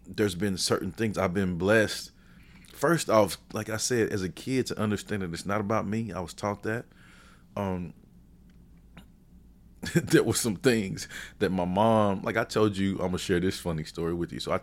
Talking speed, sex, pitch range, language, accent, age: 195 wpm, male, 90-105 Hz, English, American, 30-49